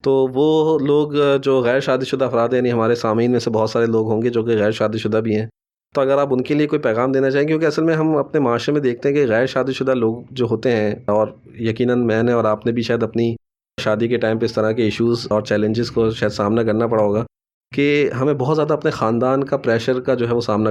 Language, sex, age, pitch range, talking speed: Urdu, male, 20-39, 105-125 Hz, 265 wpm